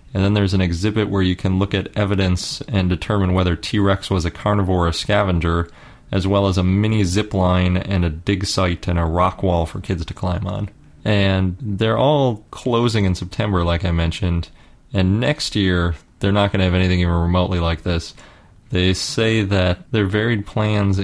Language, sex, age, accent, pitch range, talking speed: English, male, 30-49, American, 90-105 Hz, 195 wpm